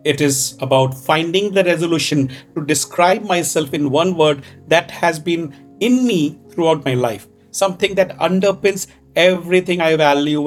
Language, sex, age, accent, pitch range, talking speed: English, male, 50-69, Indian, 125-170 Hz, 150 wpm